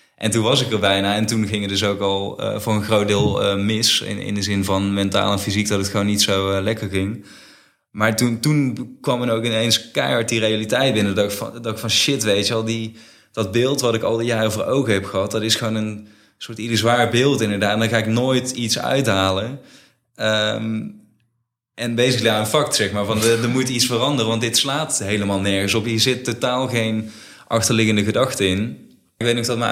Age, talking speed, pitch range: 20-39, 230 wpm, 105-120 Hz